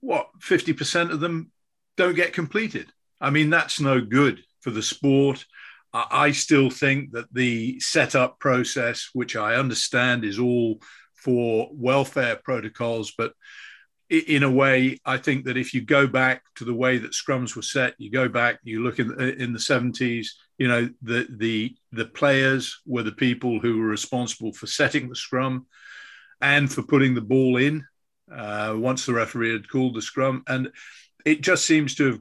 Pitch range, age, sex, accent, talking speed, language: 120-140 Hz, 50-69, male, British, 170 wpm, English